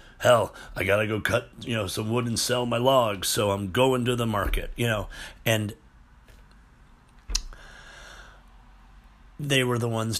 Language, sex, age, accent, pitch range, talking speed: English, male, 40-59, American, 90-120 Hz, 160 wpm